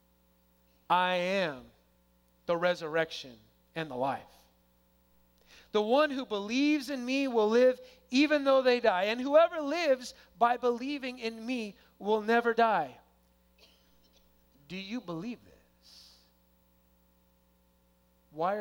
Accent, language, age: American, English, 30-49